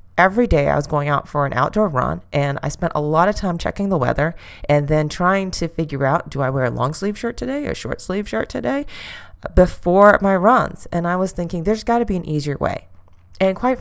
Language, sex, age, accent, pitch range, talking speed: English, female, 30-49, American, 135-175 Hz, 240 wpm